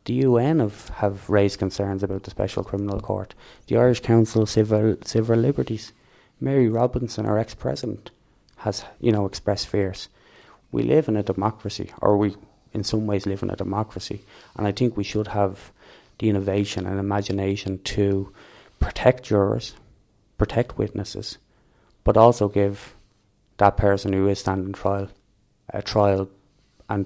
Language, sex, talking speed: English, male, 155 wpm